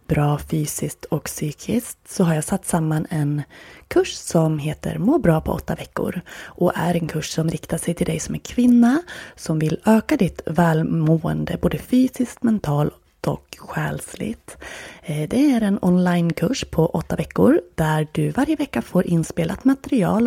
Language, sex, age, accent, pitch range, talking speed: Swedish, female, 20-39, native, 165-215 Hz, 160 wpm